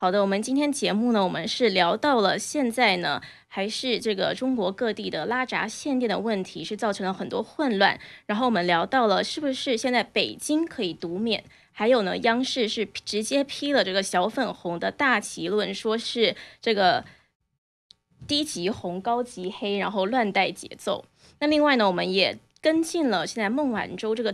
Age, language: 20-39, Chinese